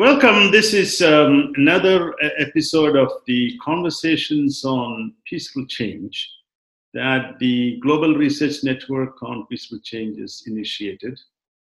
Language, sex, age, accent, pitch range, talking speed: English, male, 50-69, Indian, 130-160 Hz, 120 wpm